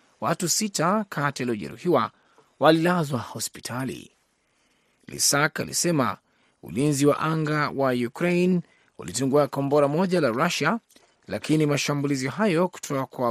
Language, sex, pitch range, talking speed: Swahili, male, 135-170 Hz, 100 wpm